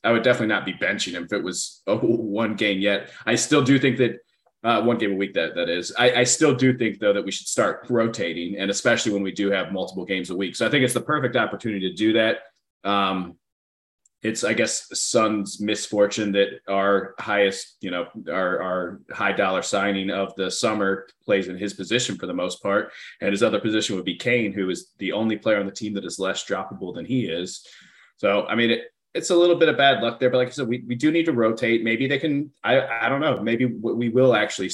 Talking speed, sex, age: 240 wpm, male, 30-49